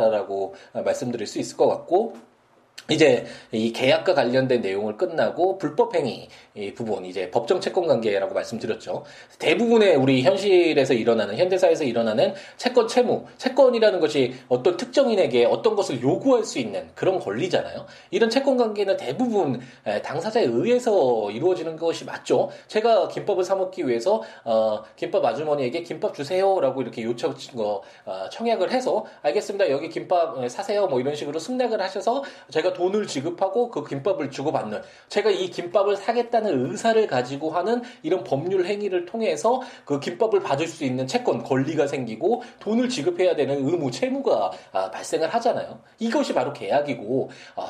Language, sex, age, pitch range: Korean, male, 20-39, 140-230 Hz